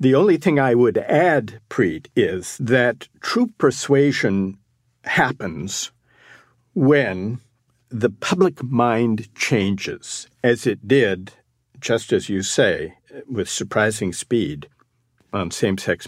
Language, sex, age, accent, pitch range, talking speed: English, male, 50-69, American, 110-140 Hz, 110 wpm